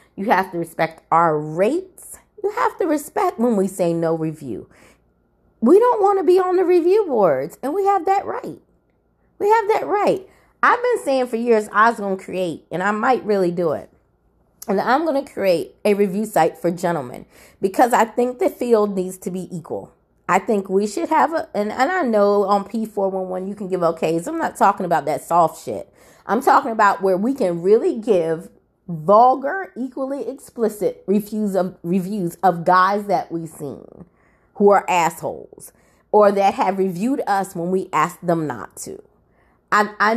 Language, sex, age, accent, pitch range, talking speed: English, female, 30-49, American, 175-240 Hz, 185 wpm